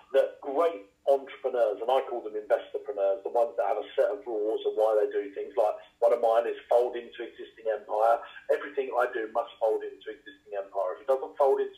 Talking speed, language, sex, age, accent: 220 wpm, English, male, 40-59, British